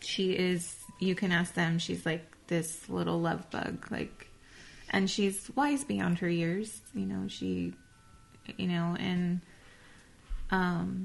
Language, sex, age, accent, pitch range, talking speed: English, female, 20-39, American, 150-200 Hz, 140 wpm